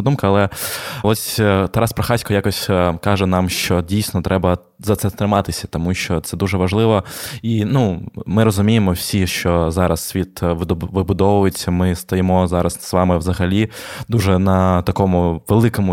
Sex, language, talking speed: male, Ukrainian, 145 wpm